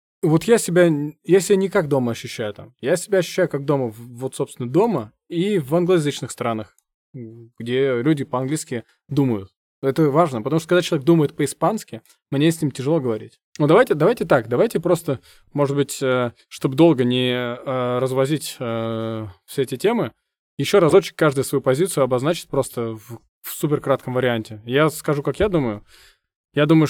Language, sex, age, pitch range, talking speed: Russian, male, 20-39, 120-155 Hz, 160 wpm